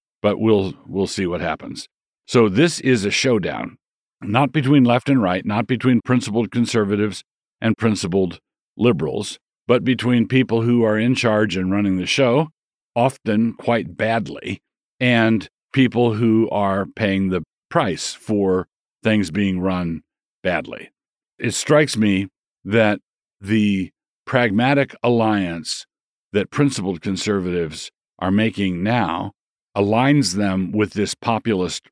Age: 50-69